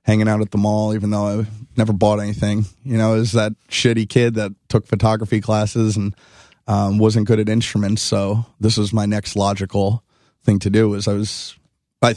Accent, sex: American, male